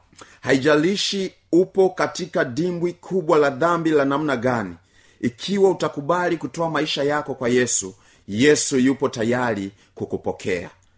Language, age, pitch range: Swahili, 30-49, 100-155 Hz